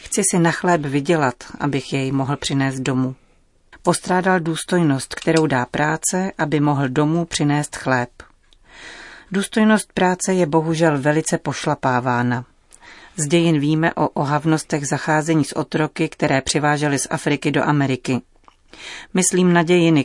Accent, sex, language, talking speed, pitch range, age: native, female, Czech, 130 wpm, 145-170 Hz, 40-59